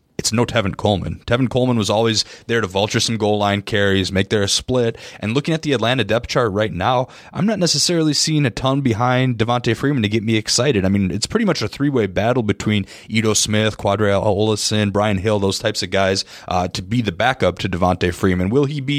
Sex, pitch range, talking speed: male, 100-120 Hz, 220 wpm